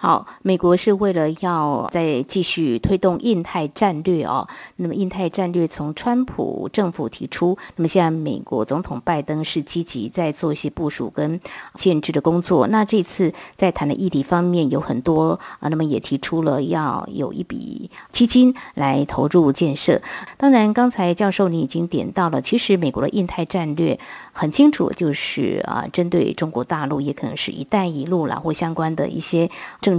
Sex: female